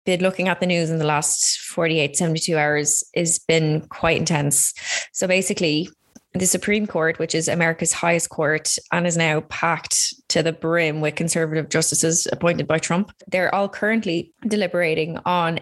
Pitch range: 165-185 Hz